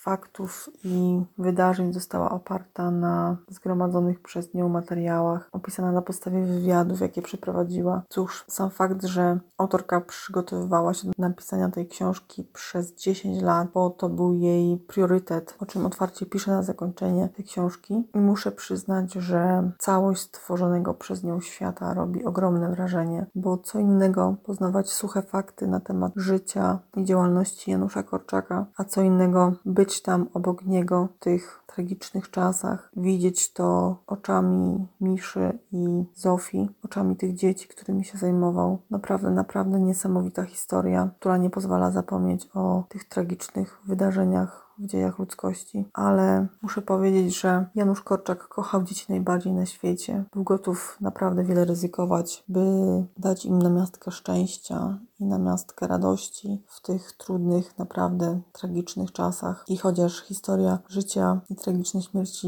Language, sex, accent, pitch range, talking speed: Polish, female, native, 175-190 Hz, 135 wpm